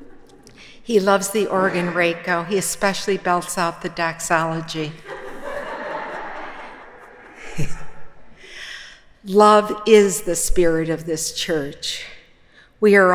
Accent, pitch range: American, 165-200 Hz